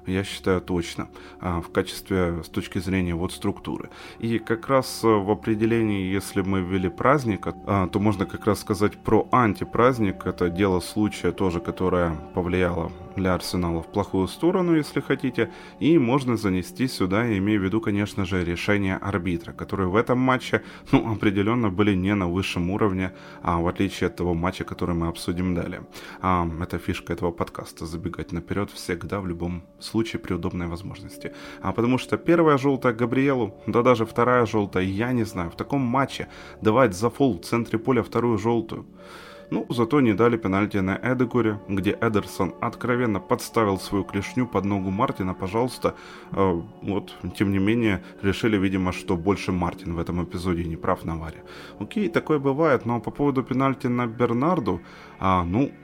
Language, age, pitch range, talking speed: Ukrainian, 20-39, 90-115 Hz, 160 wpm